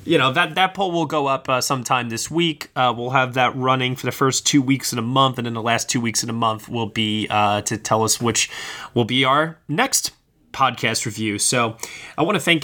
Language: English